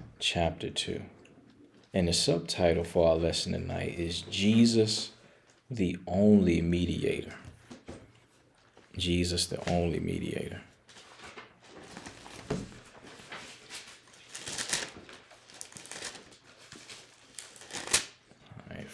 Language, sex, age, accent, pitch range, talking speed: English, male, 40-59, American, 85-100 Hz, 60 wpm